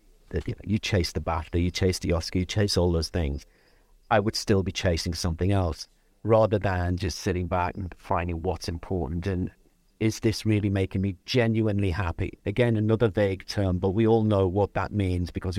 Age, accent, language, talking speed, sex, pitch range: 50-69, British, English, 200 wpm, male, 90-125 Hz